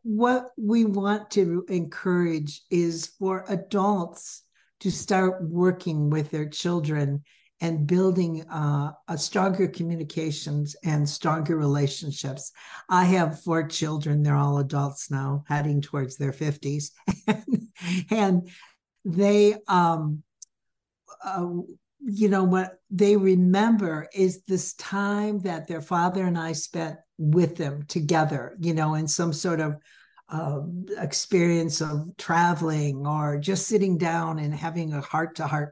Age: 60-79